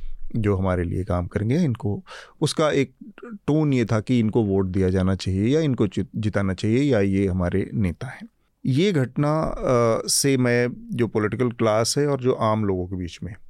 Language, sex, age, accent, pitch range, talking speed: Hindi, male, 30-49, native, 100-125 Hz, 180 wpm